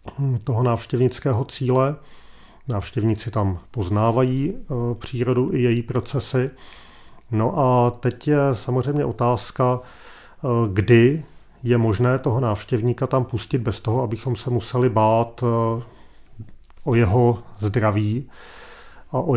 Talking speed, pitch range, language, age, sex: 105 wpm, 110-125 Hz, Czech, 40-59, male